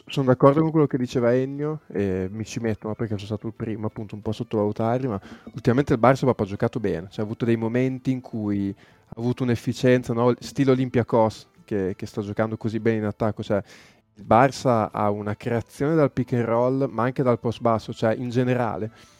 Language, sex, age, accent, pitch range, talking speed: Italian, male, 20-39, native, 110-130 Hz, 210 wpm